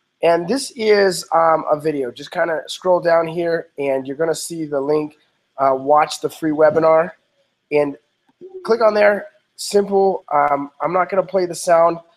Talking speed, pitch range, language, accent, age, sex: 180 wpm, 155-195 Hz, English, American, 20-39, male